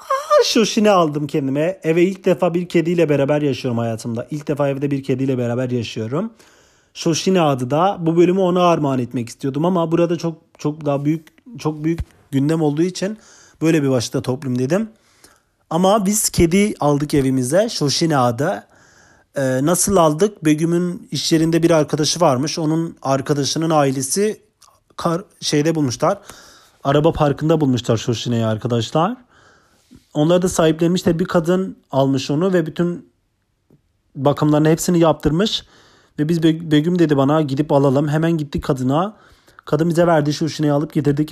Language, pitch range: Turkish, 140-170 Hz